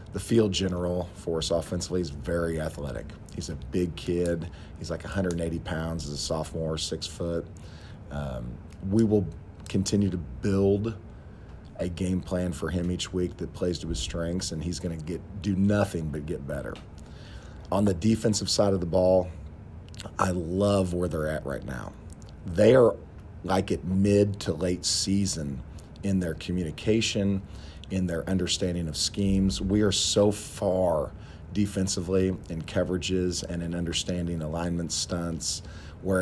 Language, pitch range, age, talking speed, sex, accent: English, 80-95 Hz, 40-59, 150 wpm, male, American